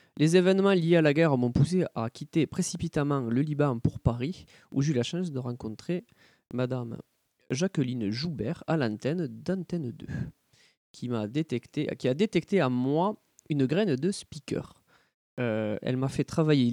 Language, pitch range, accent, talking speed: French, 125-165 Hz, French, 165 wpm